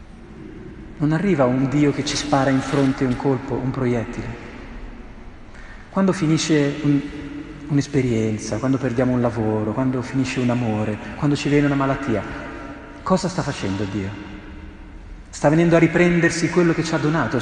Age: 40-59